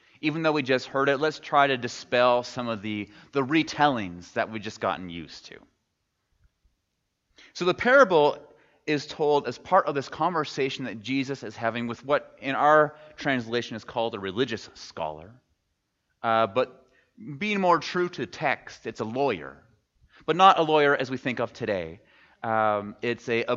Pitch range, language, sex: 115-160 Hz, English, male